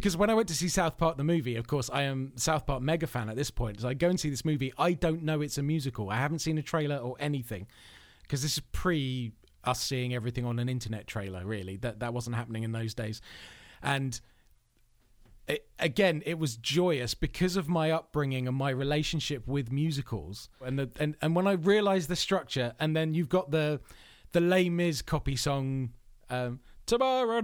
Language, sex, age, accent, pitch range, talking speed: English, male, 30-49, British, 130-185 Hz, 210 wpm